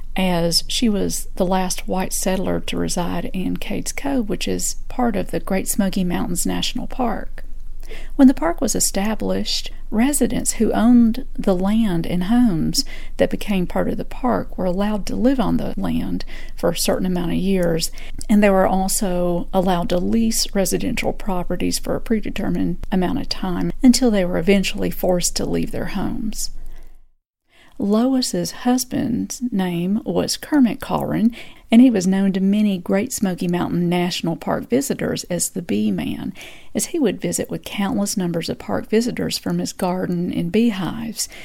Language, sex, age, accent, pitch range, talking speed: English, female, 40-59, American, 180-230 Hz, 165 wpm